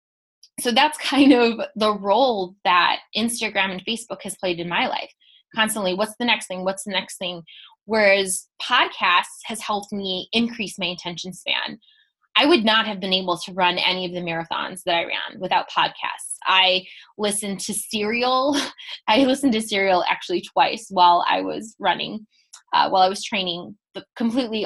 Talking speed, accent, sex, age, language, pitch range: 170 wpm, American, female, 20-39, English, 185-215 Hz